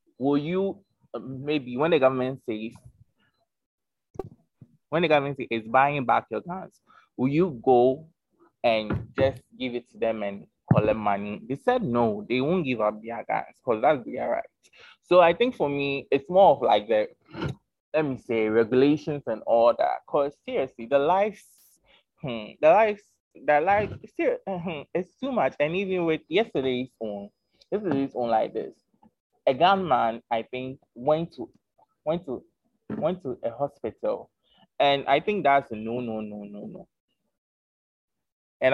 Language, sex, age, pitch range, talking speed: English, male, 20-39, 115-150 Hz, 160 wpm